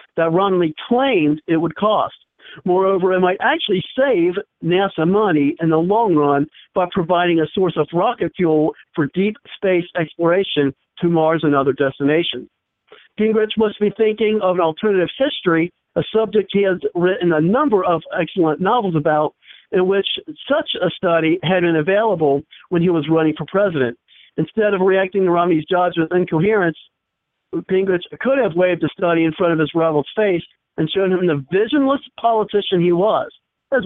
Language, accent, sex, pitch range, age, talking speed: English, American, male, 160-215 Hz, 50-69, 170 wpm